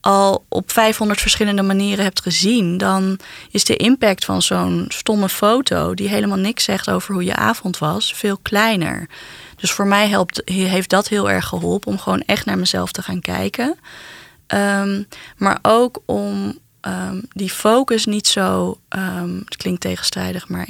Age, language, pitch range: 20-39, Dutch, 170-210 Hz